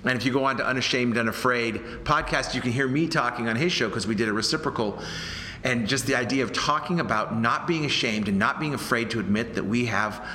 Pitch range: 110-140 Hz